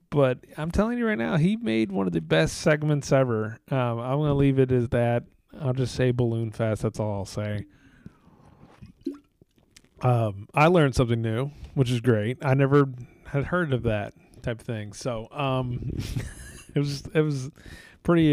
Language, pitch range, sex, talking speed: English, 115-140 Hz, male, 175 wpm